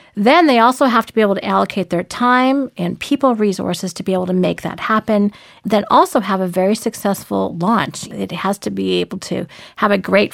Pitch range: 185-225 Hz